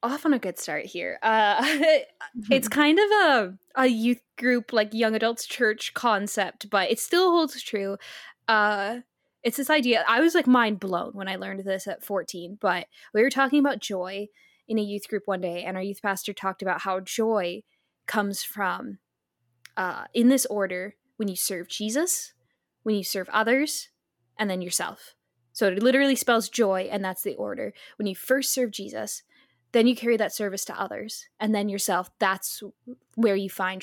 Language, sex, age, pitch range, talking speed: English, female, 10-29, 190-230 Hz, 185 wpm